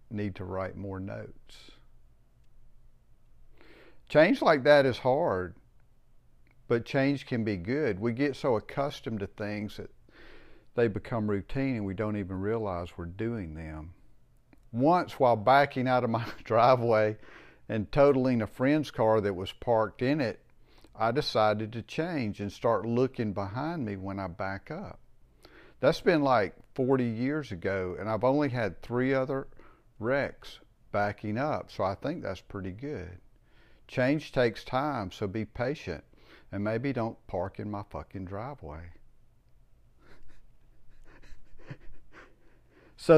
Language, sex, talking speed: English, male, 140 wpm